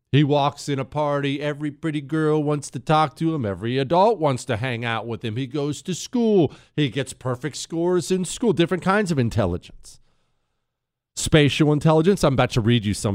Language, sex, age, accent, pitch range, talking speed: English, male, 40-59, American, 115-170 Hz, 195 wpm